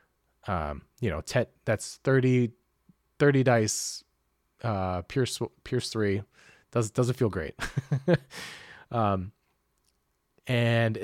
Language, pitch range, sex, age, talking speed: English, 105-140 Hz, male, 30-49, 100 wpm